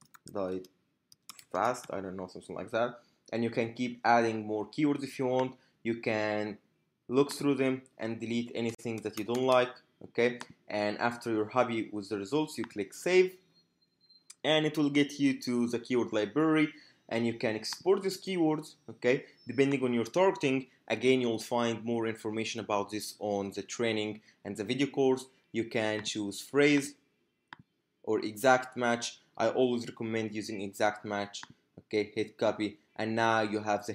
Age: 20-39